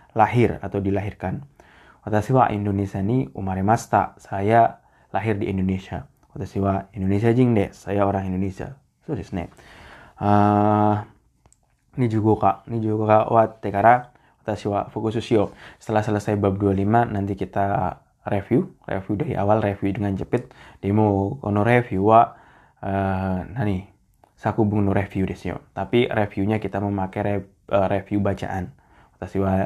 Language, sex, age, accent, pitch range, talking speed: Indonesian, male, 20-39, native, 95-110 Hz, 125 wpm